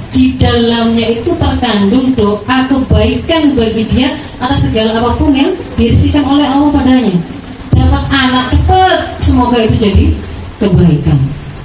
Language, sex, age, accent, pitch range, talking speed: Indonesian, female, 30-49, native, 215-320 Hz, 120 wpm